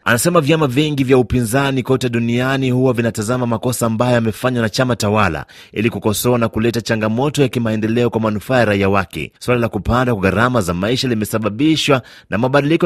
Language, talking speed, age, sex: Swahili, 165 wpm, 30-49, male